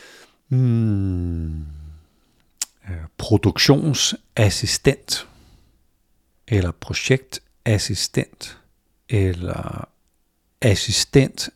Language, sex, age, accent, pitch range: Danish, male, 60-79, native, 95-120 Hz